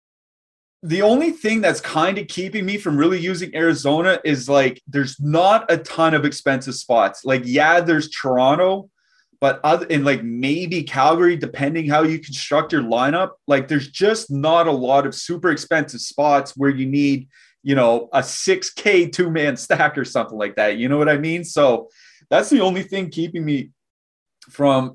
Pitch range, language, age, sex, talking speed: 125-160 Hz, English, 30-49, male, 180 wpm